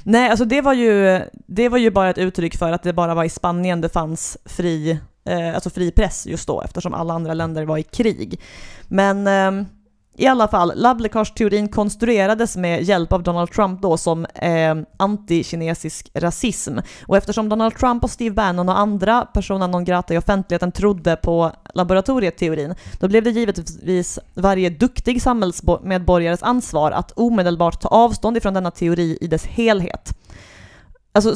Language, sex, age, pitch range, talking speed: English, female, 30-49, 175-215 Hz, 170 wpm